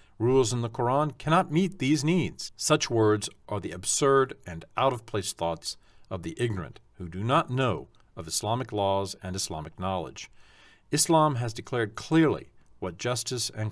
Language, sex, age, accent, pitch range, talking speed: English, male, 50-69, American, 100-120 Hz, 165 wpm